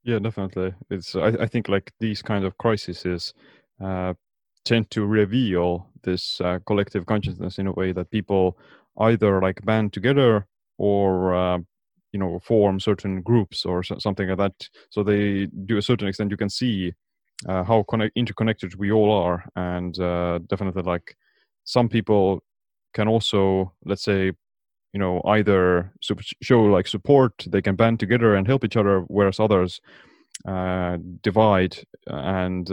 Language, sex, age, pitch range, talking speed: English, male, 20-39, 95-110 Hz, 155 wpm